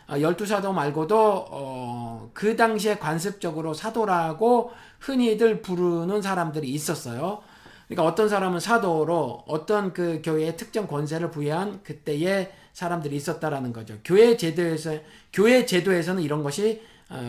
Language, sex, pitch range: Korean, male, 150-210 Hz